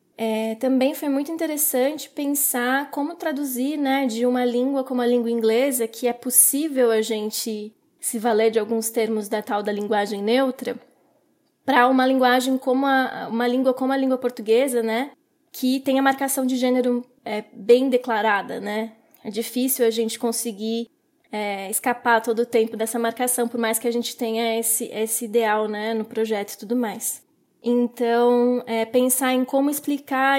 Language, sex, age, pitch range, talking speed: Portuguese, female, 20-39, 225-265 Hz, 170 wpm